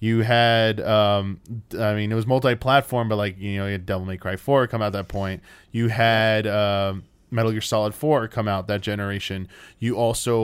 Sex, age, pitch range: male, 20-39, 100-115 Hz